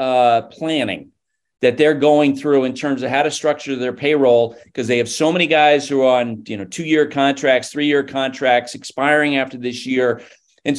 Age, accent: 40-59, American